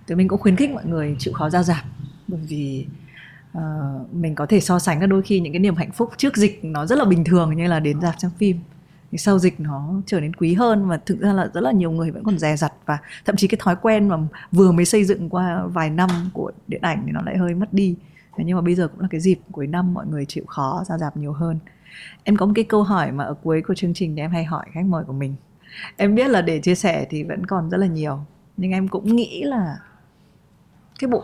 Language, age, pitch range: Vietnamese, 20-39, 165-205 Hz